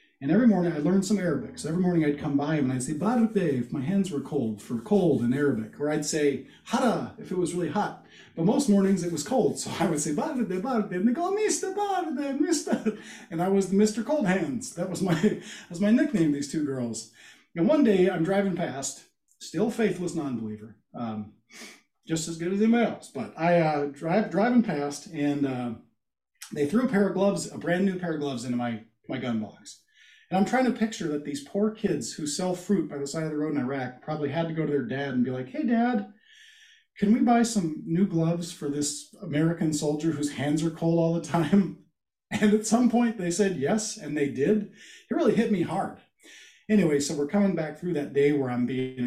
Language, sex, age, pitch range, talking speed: English, male, 40-59, 140-210 Hz, 225 wpm